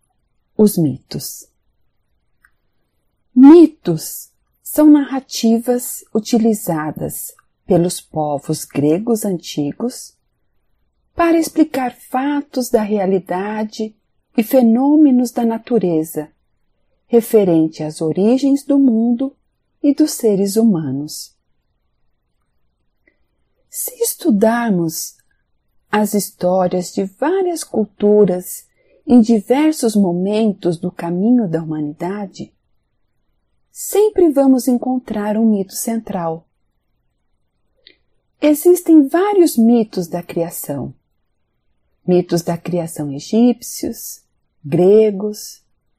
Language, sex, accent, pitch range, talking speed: Portuguese, female, Brazilian, 175-265 Hz, 75 wpm